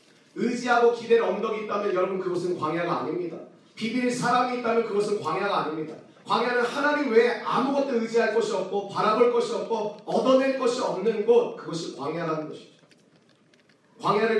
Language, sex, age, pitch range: Korean, male, 40-59, 165-230 Hz